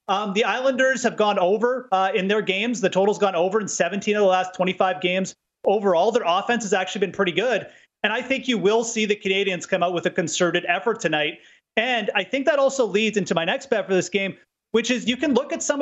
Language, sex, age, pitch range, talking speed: English, male, 30-49, 190-235 Hz, 245 wpm